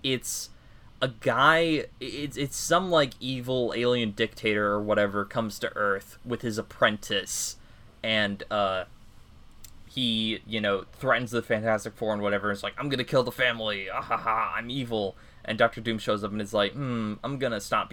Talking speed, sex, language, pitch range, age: 165 wpm, male, English, 105-125 Hz, 20-39